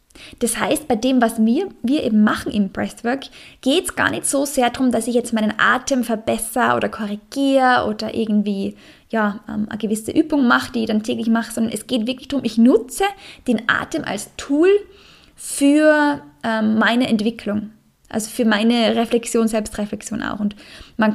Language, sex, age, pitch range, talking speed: German, female, 10-29, 220-255 Hz, 175 wpm